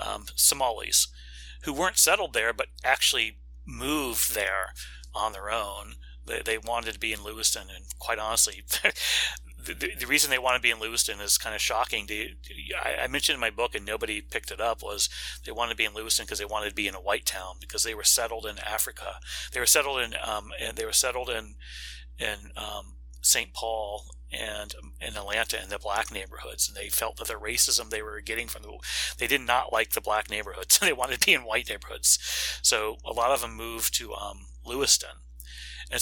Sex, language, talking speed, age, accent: male, English, 215 wpm, 30-49, American